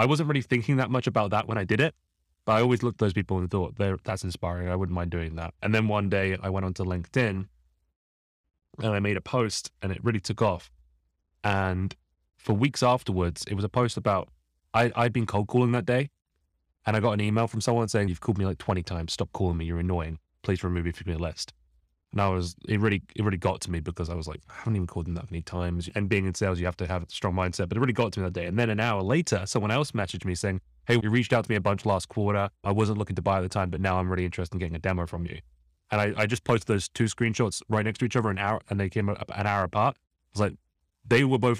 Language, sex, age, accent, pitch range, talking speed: English, male, 20-39, British, 90-110 Hz, 285 wpm